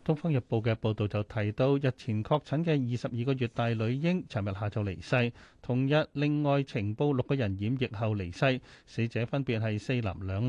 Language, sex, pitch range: Chinese, male, 110-150 Hz